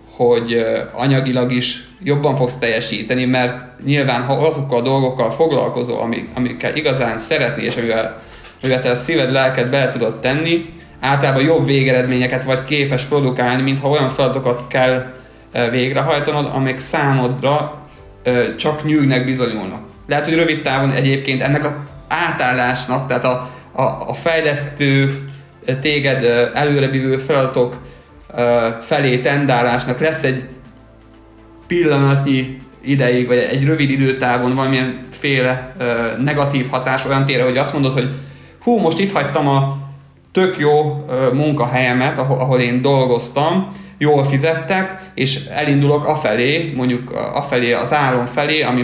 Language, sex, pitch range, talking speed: Hungarian, male, 125-145 Hz, 120 wpm